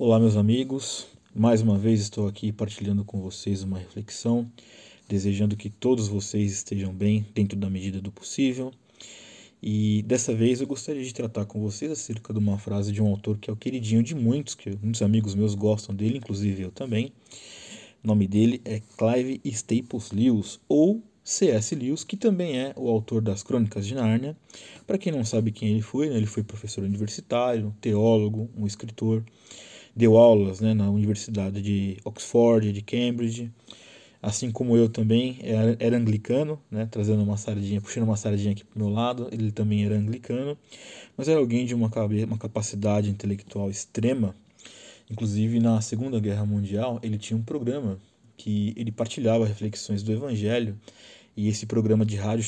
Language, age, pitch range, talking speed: Portuguese, 20-39, 105-120 Hz, 170 wpm